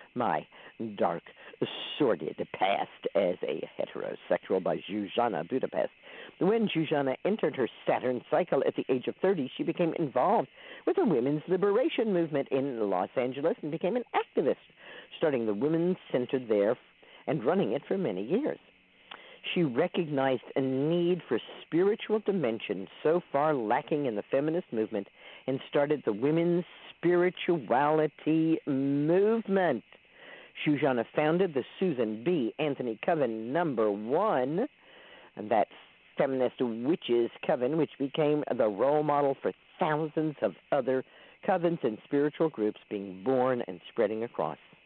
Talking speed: 130 wpm